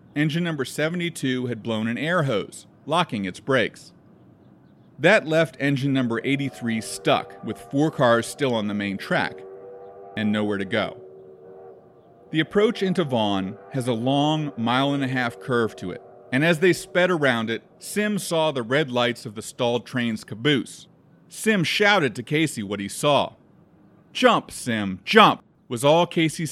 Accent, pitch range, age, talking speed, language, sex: American, 110-155 Hz, 40-59, 155 wpm, English, male